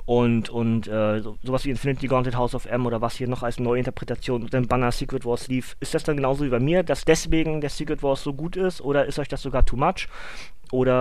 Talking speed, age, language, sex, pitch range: 255 wpm, 20-39, German, male, 115-140 Hz